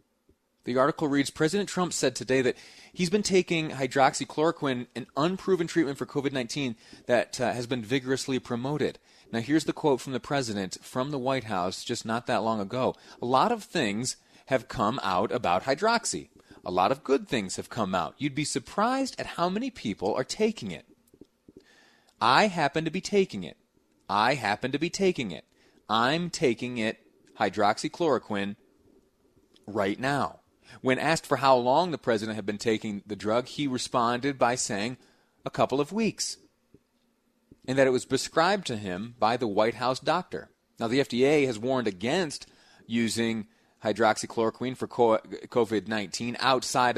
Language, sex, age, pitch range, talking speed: English, male, 30-49, 115-160 Hz, 160 wpm